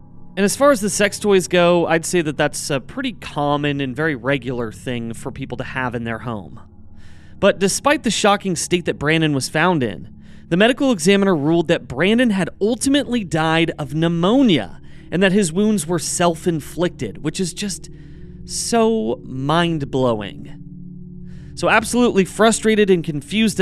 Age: 30-49